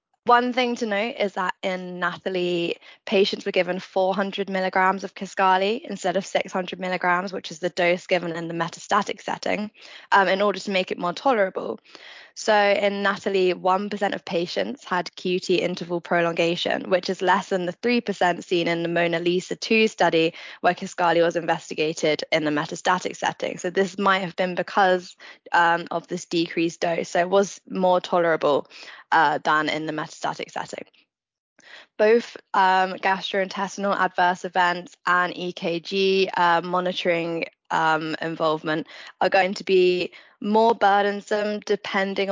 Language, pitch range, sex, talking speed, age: English, 175-195 Hz, female, 155 wpm, 10-29